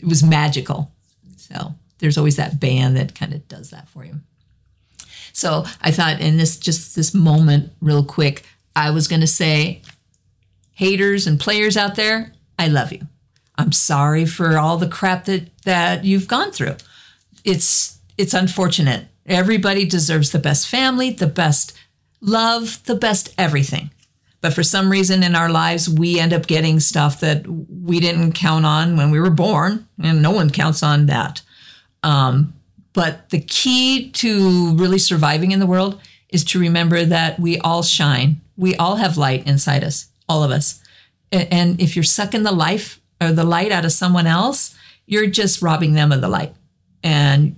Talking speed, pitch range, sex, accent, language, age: 175 wpm, 145-185 Hz, female, American, English, 50-69